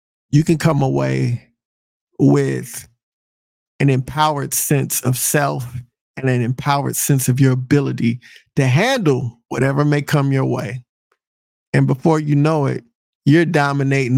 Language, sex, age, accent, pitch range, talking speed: English, male, 50-69, American, 130-155 Hz, 130 wpm